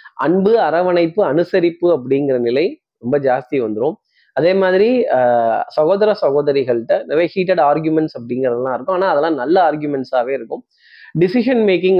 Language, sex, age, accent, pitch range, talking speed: Tamil, male, 20-39, native, 145-210 Hz, 125 wpm